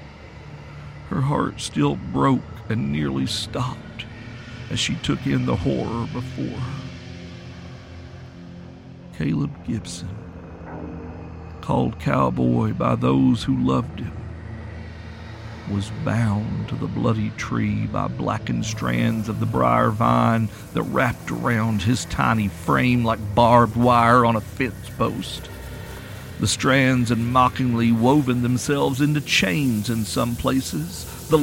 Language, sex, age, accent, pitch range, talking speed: English, male, 50-69, American, 90-130 Hz, 120 wpm